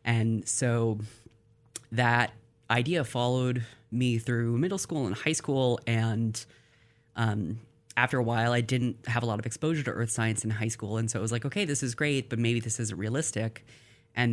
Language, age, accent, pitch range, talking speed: English, 30-49, American, 110-120 Hz, 190 wpm